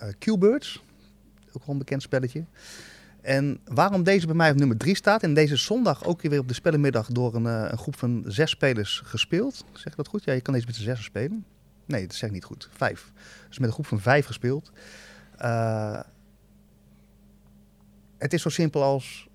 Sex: male